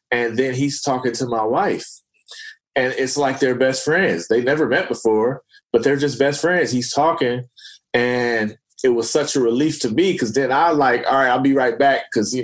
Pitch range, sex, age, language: 120-155 Hz, male, 20-39, English